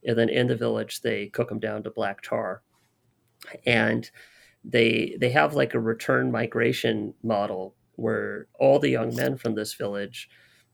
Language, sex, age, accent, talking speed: English, male, 30-49, American, 160 wpm